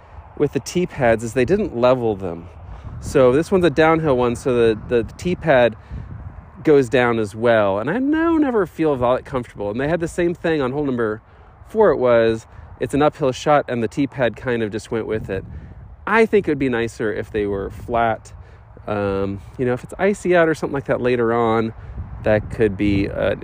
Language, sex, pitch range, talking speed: English, male, 110-155 Hz, 205 wpm